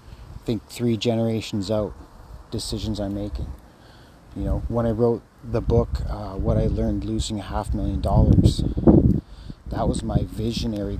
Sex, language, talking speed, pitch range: male, English, 145 wpm, 95-115 Hz